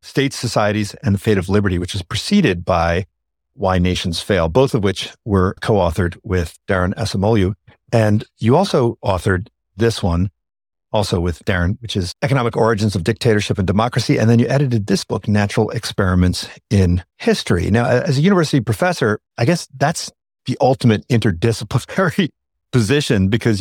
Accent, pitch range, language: American, 95-120 Hz, English